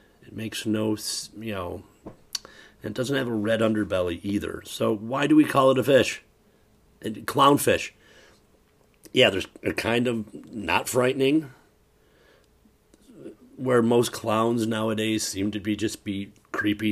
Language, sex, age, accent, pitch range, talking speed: English, male, 40-59, American, 105-120 Hz, 140 wpm